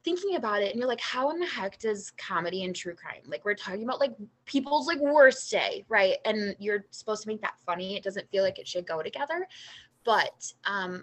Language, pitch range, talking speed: English, 180-235 Hz, 230 wpm